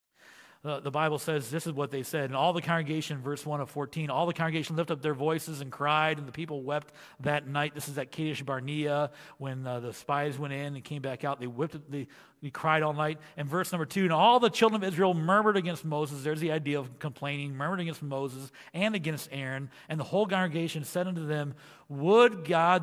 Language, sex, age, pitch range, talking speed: English, male, 40-59, 140-180 Hz, 225 wpm